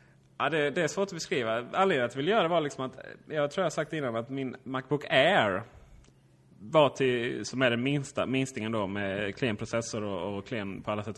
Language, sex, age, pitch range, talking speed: Swedish, male, 30-49, 105-135 Hz, 215 wpm